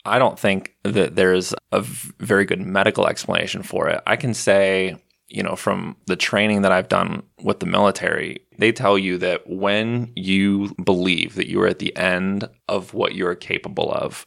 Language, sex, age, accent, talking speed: English, male, 20-39, American, 185 wpm